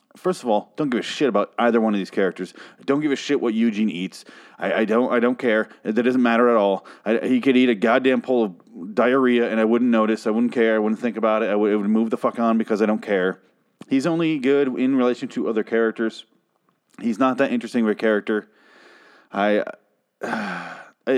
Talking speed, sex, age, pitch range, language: 225 wpm, male, 30-49, 100-130 Hz, English